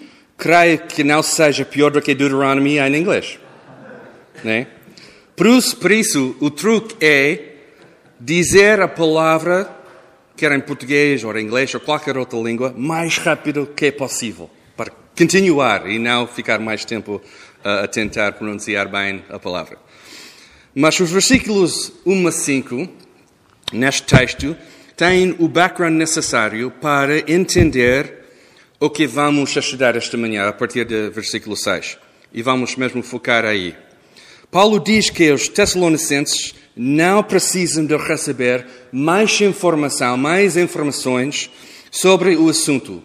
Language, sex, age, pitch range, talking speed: Portuguese, male, 40-59, 125-170 Hz, 130 wpm